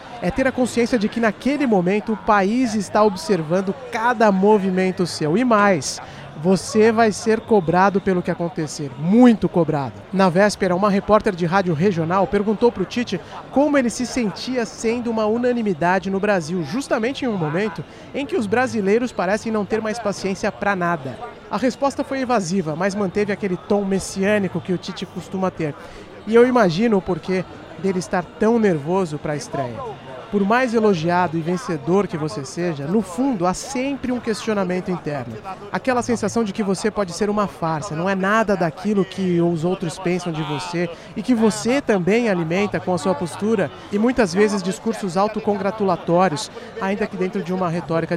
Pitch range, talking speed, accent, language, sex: 175-220 Hz, 175 wpm, Brazilian, Portuguese, male